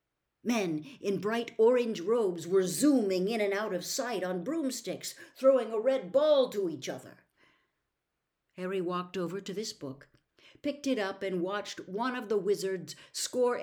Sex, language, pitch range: female, English, 165-230 Hz